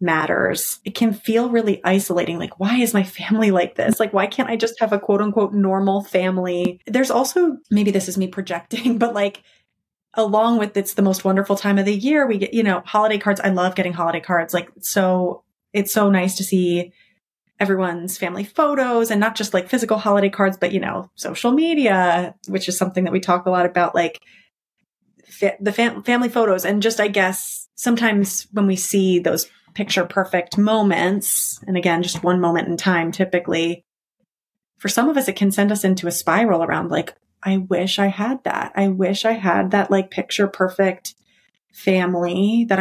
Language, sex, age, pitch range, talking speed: English, female, 30-49, 180-210 Hz, 195 wpm